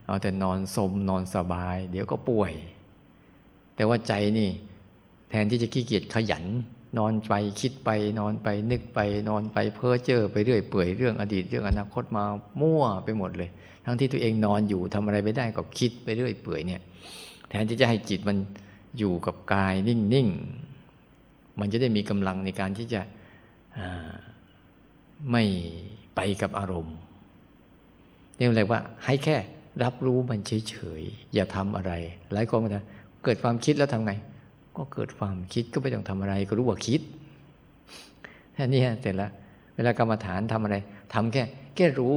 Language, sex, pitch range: Thai, male, 100-120 Hz